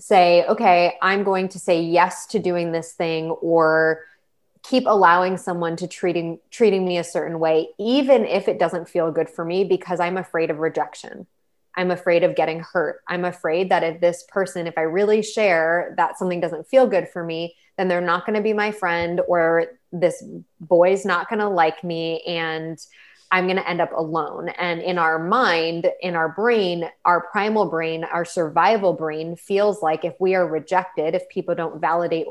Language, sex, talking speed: English, female, 190 wpm